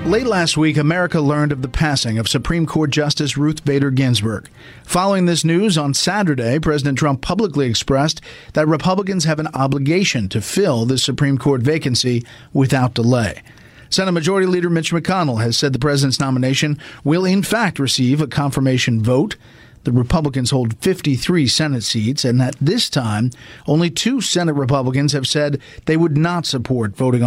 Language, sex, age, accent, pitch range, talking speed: English, male, 50-69, American, 130-160 Hz, 165 wpm